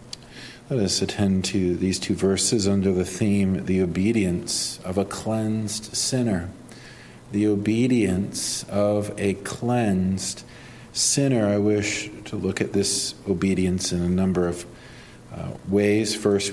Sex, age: male, 50-69